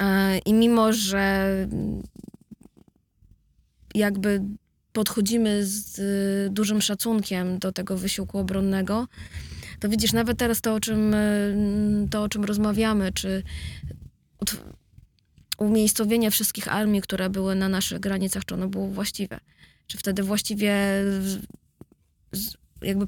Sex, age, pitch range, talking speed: female, 20-39, 190-210 Hz, 105 wpm